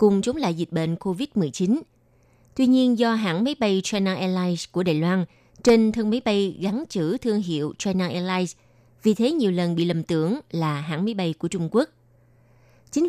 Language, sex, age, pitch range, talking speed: Vietnamese, female, 20-39, 165-220 Hz, 195 wpm